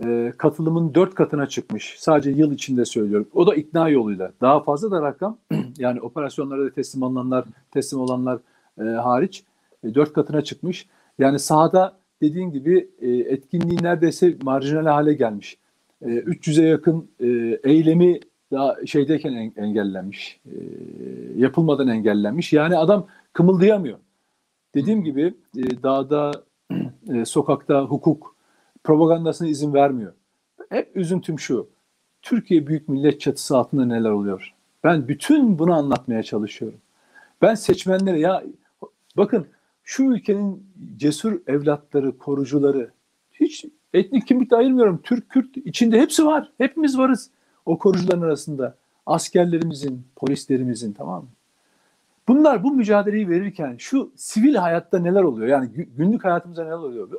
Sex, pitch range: male, 135-190 Hz